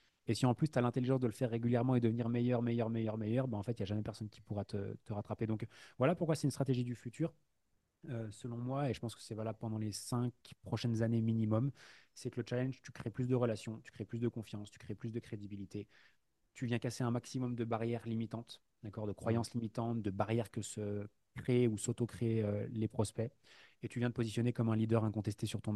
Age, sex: 20-39, male